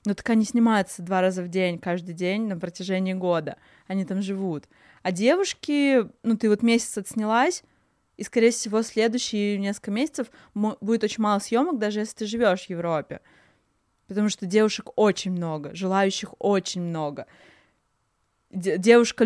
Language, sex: Russian, female